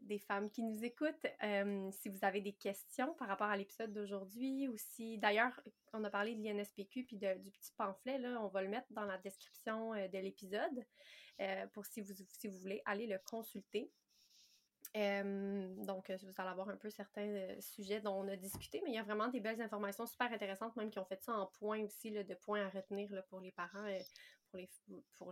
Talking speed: 225 wpm